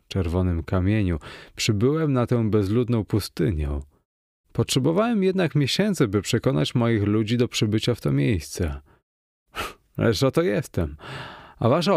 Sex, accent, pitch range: male, native, 90-120 Hz